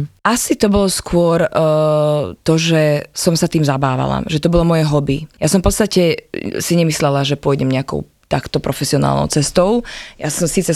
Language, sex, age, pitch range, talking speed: Slovak, female, 20-39, 145-175 Hz, 175 wpm